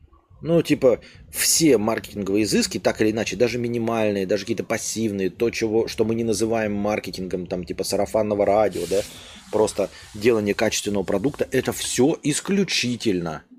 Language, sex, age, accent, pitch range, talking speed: Russian, male, 20-39, native, 95-140 Hz, 135 wpm